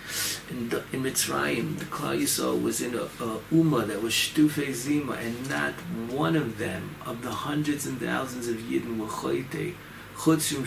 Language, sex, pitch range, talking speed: English, male, 110-150 Hz, 175 wpm